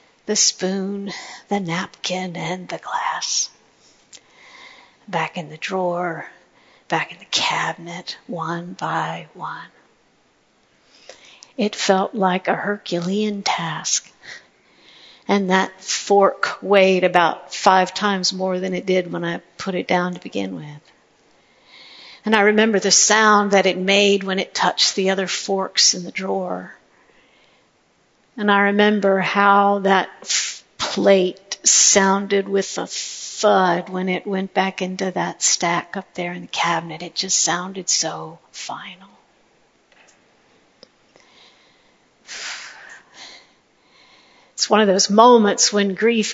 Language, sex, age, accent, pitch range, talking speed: English, female, 60-79, American, 180-205 Hz, 120 wpm